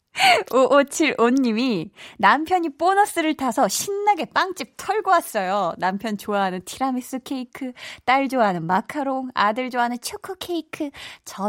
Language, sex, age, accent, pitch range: Korean, female, 20-39, native, 200-275 Hz